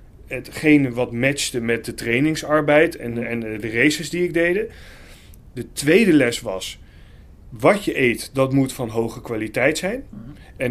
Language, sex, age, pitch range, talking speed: Dutch, male, 30-49, 115-150 Hz, 150 wpm